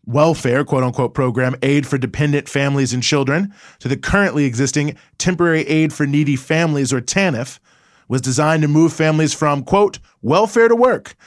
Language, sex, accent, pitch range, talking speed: English, male, American, 130-170 Hz, 160 wpm